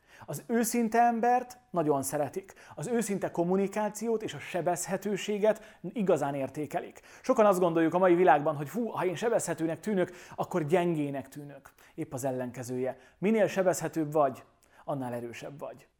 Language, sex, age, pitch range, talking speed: Hungarian, male, 30-49, 145-190 Hz, 140 wpm